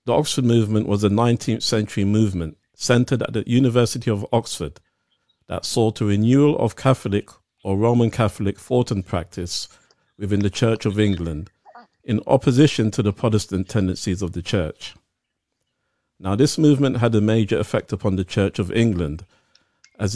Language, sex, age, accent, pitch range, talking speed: English, male, 50-69, British, 95-120 Hz, 160 wpm